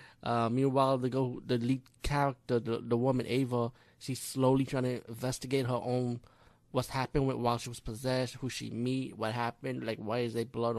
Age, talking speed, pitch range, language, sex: 20-39, 195 wpm, 125-160 Hz, English, male